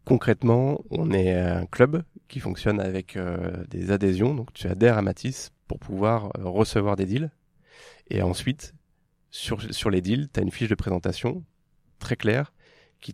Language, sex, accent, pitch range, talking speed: French, male, French, 95-115 Hz, 170 wpm